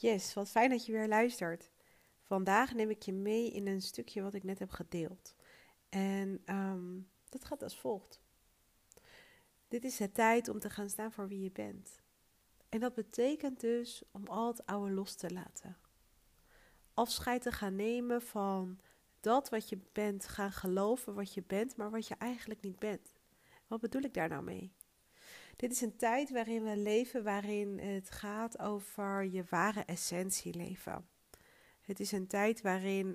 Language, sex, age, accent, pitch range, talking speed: Dutch, female, 40-59, Dutch, 190-220 Hz, 170 wpm